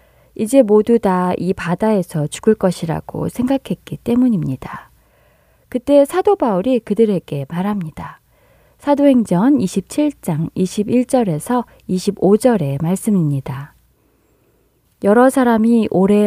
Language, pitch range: Korean, 175-225 Hz